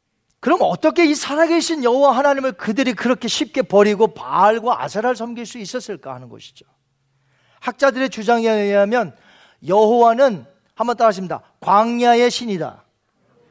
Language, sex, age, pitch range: Korean, male, 40-59, 210-285 Hz